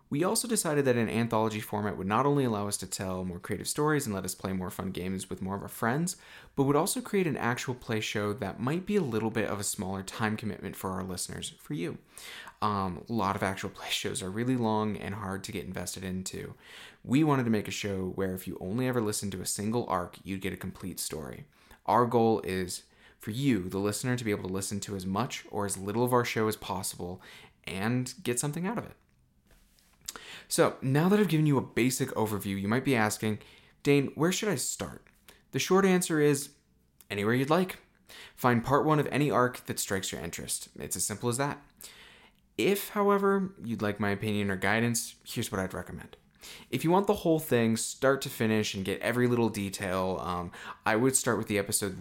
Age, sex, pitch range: 20-39, male, 95-130 Hz